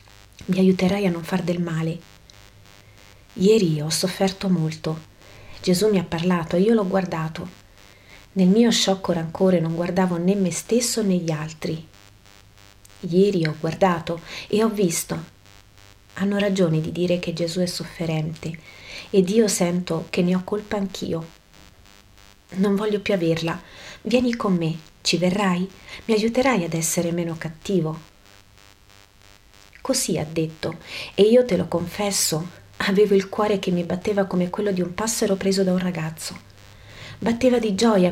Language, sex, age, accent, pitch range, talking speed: Italian, female, 30-49, native, 155-195 Hz, 150 wpm